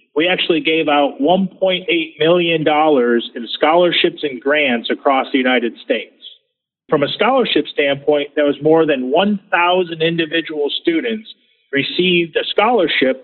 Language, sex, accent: English, male, American